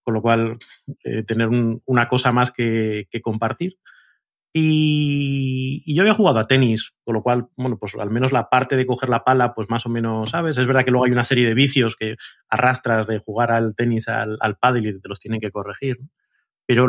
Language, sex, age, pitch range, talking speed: Spanish, male, 30-49, 110-135 Hz, 225 wpm